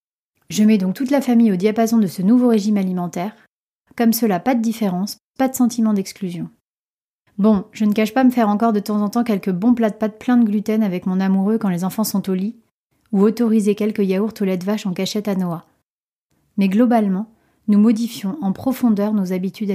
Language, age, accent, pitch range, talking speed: French, 30-49, French, 200-230 Hz, 215 wpm